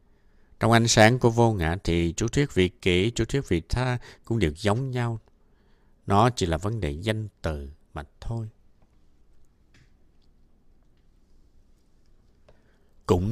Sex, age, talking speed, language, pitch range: male, 60-79, 130 wpm, Vietnamese, 85-115 Hz